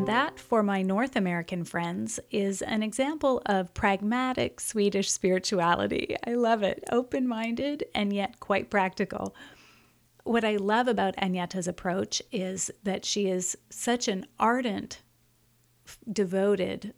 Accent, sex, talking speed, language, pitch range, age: American, female, 125 wpm, English, 185-220 Hz, 30-49